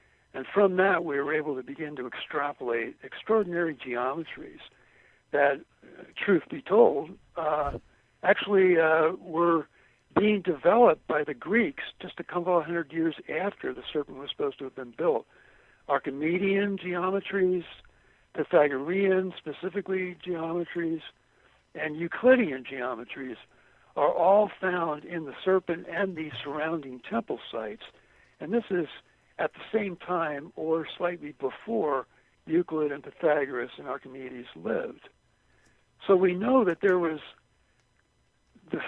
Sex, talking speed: male, 125 wpm